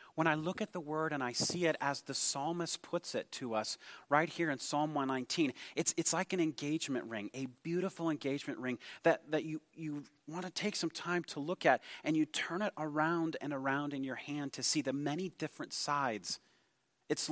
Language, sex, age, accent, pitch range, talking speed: English, male, 30-49, American, 135-165 Hz, 210 wpm